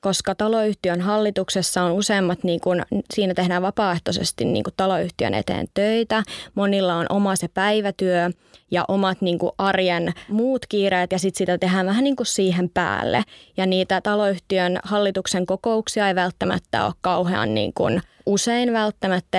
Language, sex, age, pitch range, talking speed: Finnish, female, 20-39, 185-205 Hz, 150 wpm